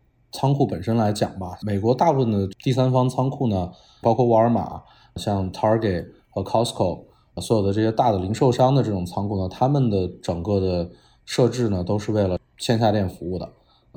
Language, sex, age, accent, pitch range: Chinese, male, 20-39, native, 95-105 Hz